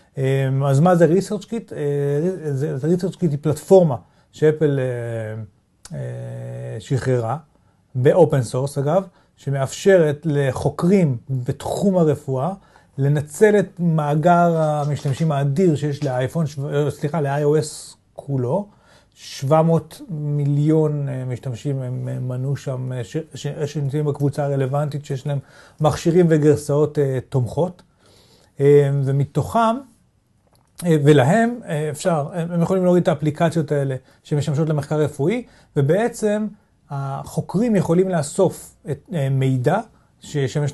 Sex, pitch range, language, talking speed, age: male, 135-175 Hz, Hebrew, 105 wpm, 30-49